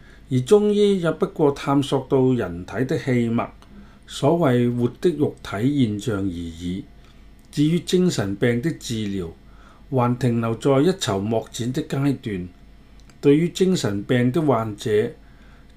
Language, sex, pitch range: Chinese, male, 105-150 Hz